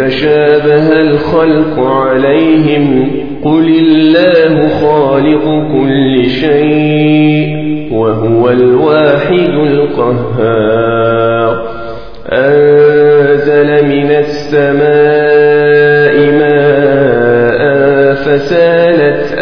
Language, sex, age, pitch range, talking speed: Arabic, male, 40-59, 140-160 Hz, 50 wpm